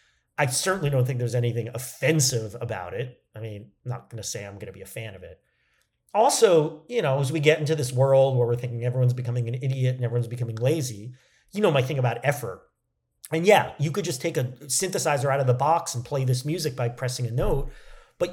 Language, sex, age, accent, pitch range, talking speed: English, male, 40-59, American, 125-155 Hz, 225 wpm